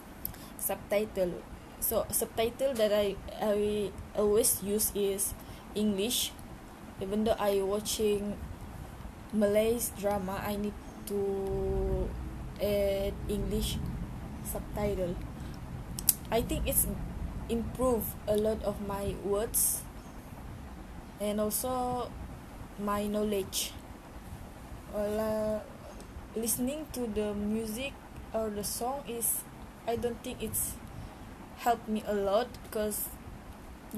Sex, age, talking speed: female, 20-39, 95 wpm